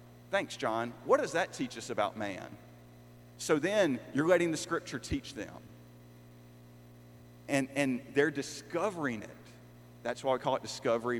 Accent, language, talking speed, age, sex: American, English, 150 wpm, 40-59, male